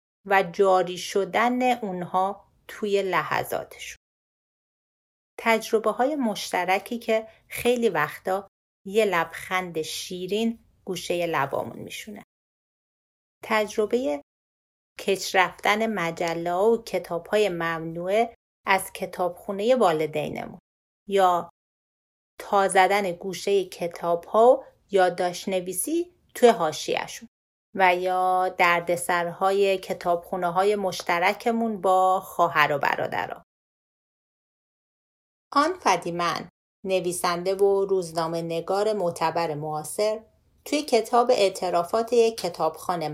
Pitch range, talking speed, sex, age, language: 175-220 Hz, 80 wpm, female, 30-49, Persian